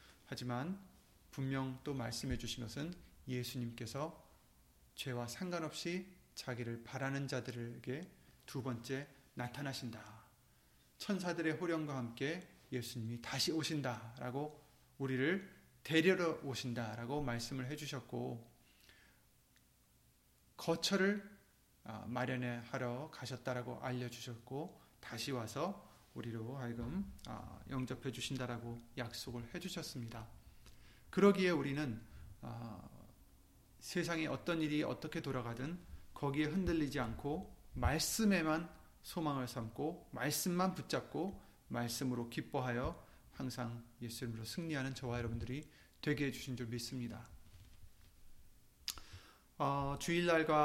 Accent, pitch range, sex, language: native, 120-155 Hz, male, Korean